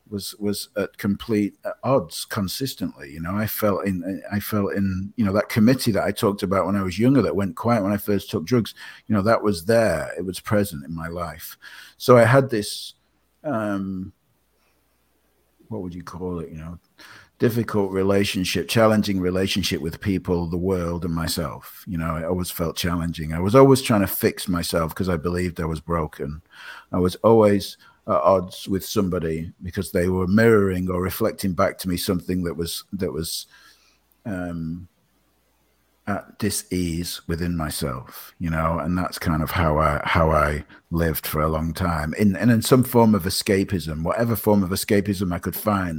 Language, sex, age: English, male, 50-69